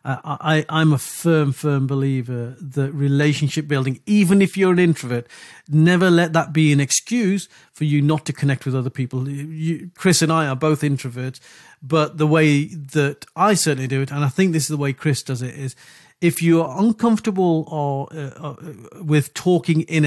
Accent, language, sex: British, English, male